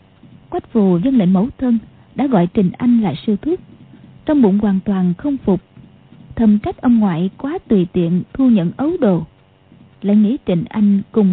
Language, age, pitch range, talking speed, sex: Vietnamese, 20-39, 200-265 Hz, 185 wpm, female